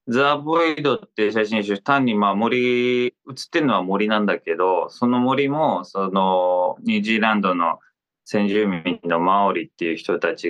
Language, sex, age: Japanese, male, 20-39